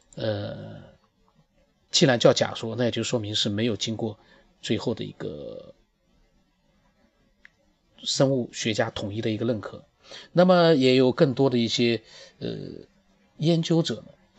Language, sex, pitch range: Chinese, male, 115-165 Hz